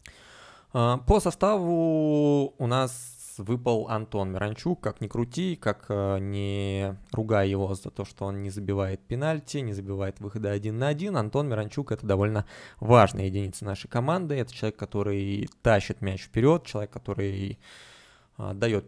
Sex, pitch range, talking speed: male, 100-130 Hz, 145 wpm